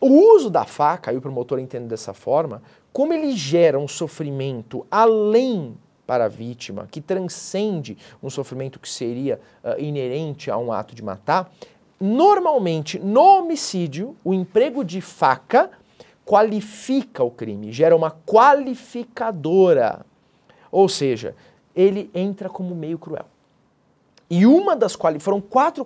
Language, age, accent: Portuguese, 40-59, Brazilian